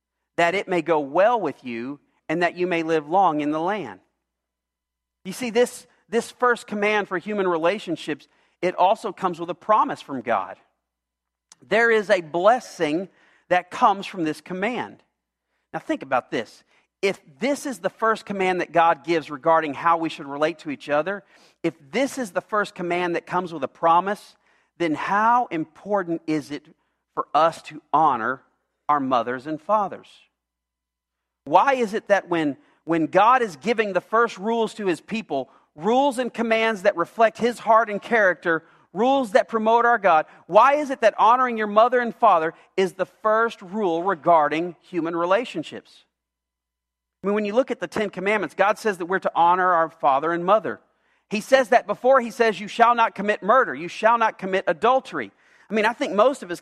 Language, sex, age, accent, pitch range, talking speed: English, male, 40-59, American, 165-225 Hz, 185 wpm